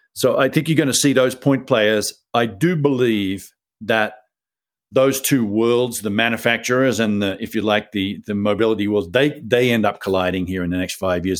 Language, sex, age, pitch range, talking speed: English, male, 50-69, 100-125 Hz, 205 wpm